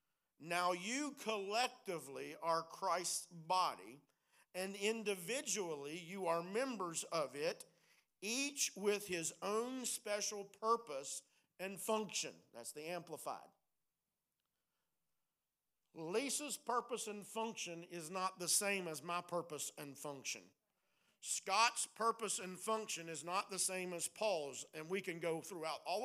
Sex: male